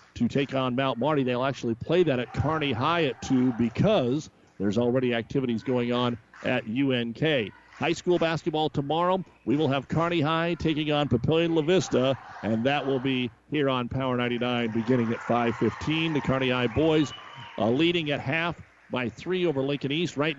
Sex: male